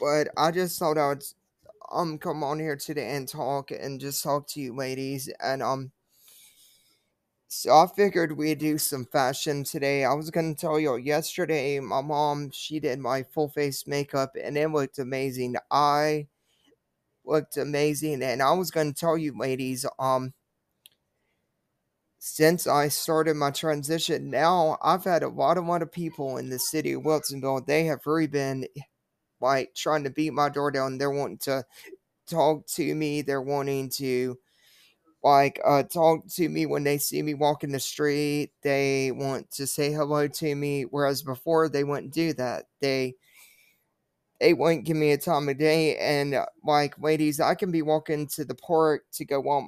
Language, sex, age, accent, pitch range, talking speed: English, male, 20-39, American, 140-155 Hz, 175 wpm